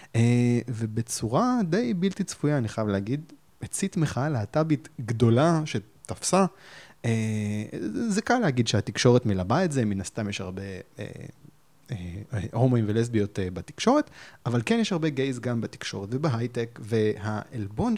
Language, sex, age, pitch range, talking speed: Hebrew, male, 30-49, 110-150 Hz, 120 wpm